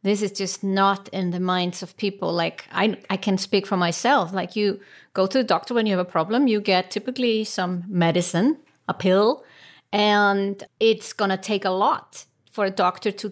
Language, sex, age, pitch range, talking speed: English, female, 30-49, 180-210 Hz, 205 wpm